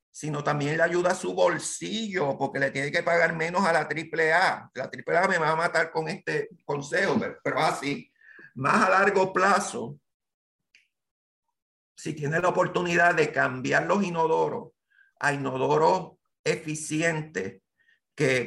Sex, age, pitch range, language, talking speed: male, 50-69, 155-195 Hz, Spanish, 145 wpm